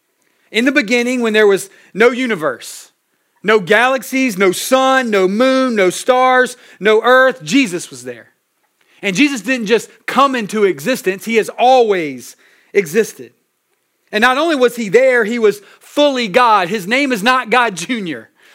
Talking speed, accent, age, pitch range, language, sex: 155 wpm, American, 30-49, 200-260 Hz, English, male